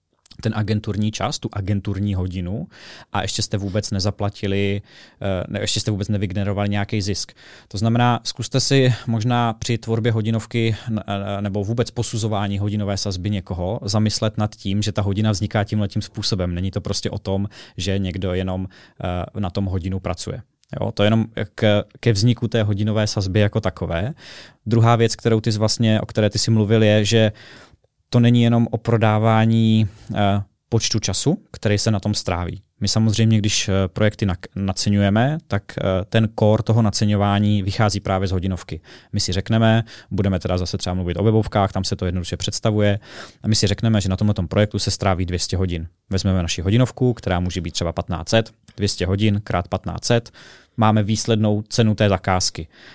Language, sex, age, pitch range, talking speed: Czech, male, 20-39, 100-110 Hz, 165 wpm